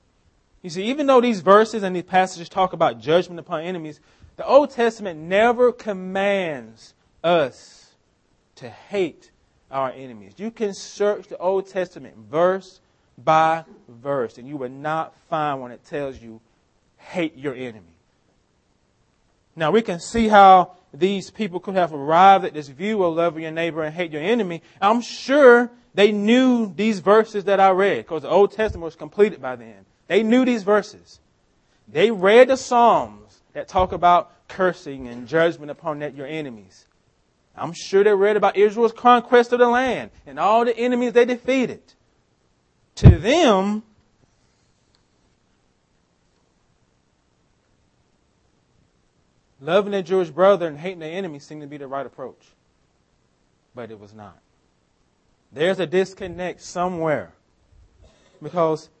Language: English